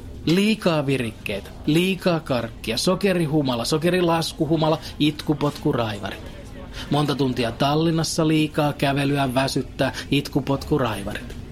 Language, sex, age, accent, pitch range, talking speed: Finnish, male, 30-49, native, 120-150 Hz, 75 wpm